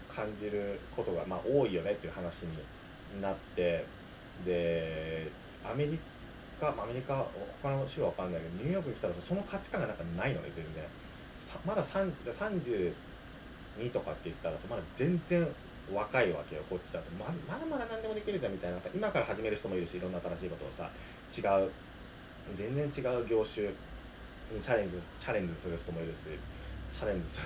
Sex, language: male, Japanese